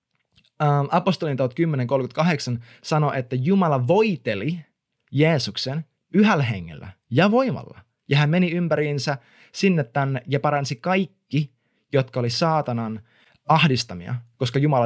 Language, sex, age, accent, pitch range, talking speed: Finnish, male, 20-39, native, 125-160 Hz, 110 wpm